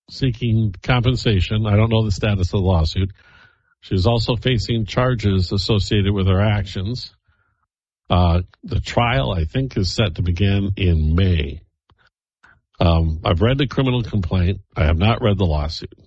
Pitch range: 95-120 Hz